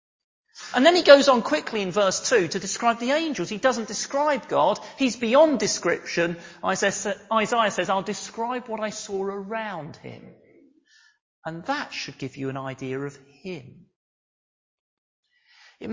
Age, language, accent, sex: 40-59, English, British, male